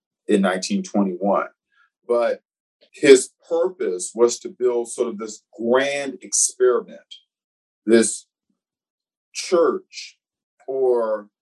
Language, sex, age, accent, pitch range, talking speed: English, male, 40-59, American, 110-135 Hz, 85 wpm